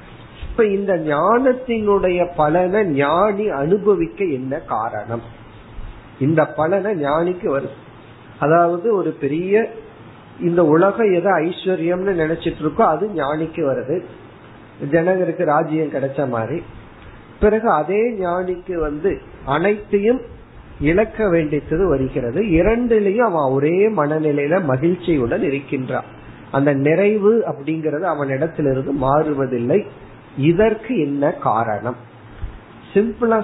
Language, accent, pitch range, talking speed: Tamil, native, 135-195 Hz, 65 wpm